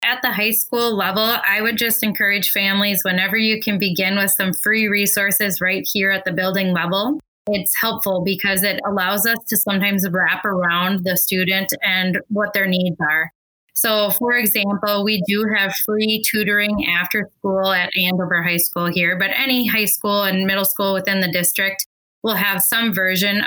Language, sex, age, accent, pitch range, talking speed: English, female, 20-39, American, 185-215 Hz, 180 wpm